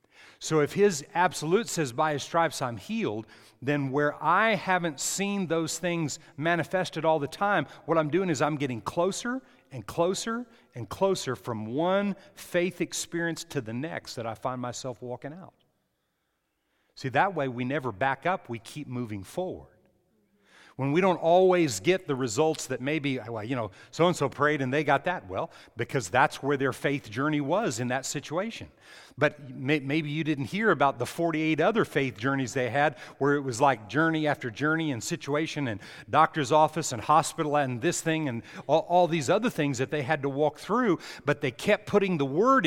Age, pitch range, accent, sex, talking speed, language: 40-59, 130-170 Hz, American, male, 185 wpm, English